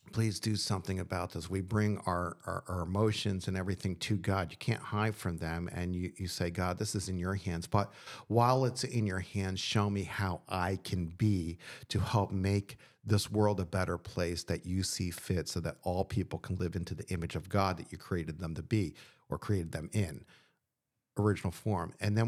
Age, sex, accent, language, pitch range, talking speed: 50-69, male, American, English, 90-110 Hz, 215 wpm